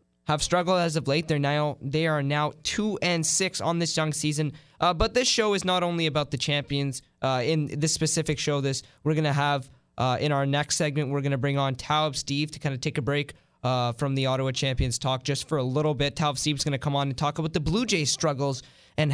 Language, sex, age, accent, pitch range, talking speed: English, male, 20-39, American, 140-170 Hz, 240 wpm